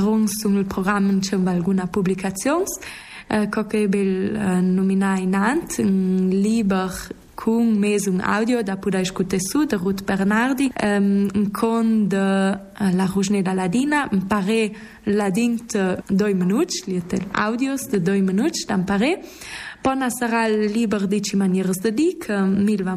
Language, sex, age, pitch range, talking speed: Italian, female, 20-39, 195-230 Hz, 125 wpm